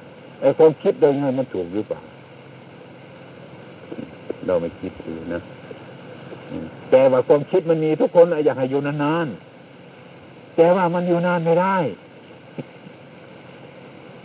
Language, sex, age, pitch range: Thai, male, 60-79, 130-180 Hz